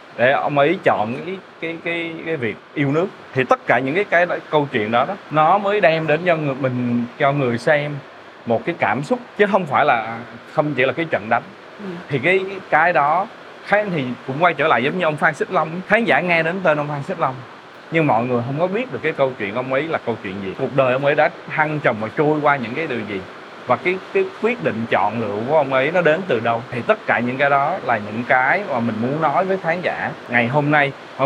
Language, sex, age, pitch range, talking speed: Vietnamese, male, 20-39, 125-170 Hz, 260 wpm